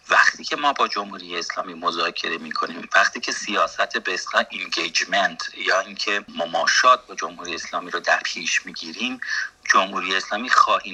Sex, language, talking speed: male, English, 150 wpm